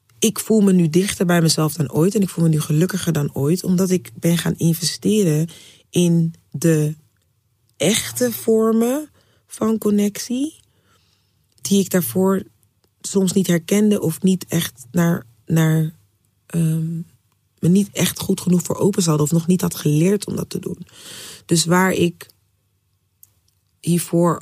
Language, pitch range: Dutch, 145-180 Hz